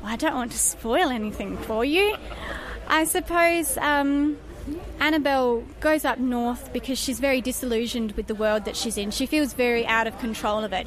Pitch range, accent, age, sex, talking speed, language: 225-270 Hz, Australian, 20-39, female, 180 wpm, English